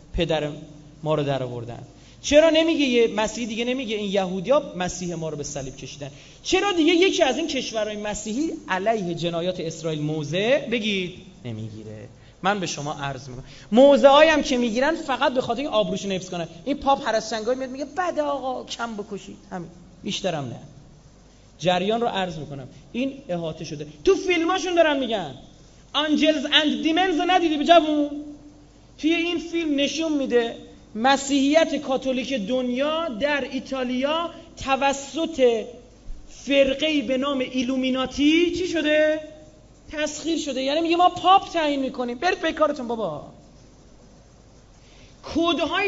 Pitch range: 185-300 Hz